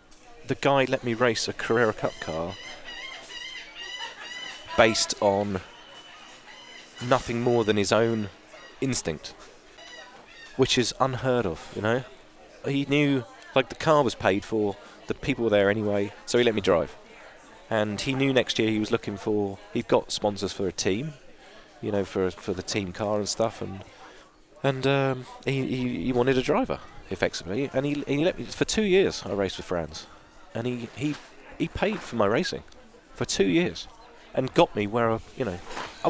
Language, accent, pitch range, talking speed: English, British, 105-135 Hz, 175 wpm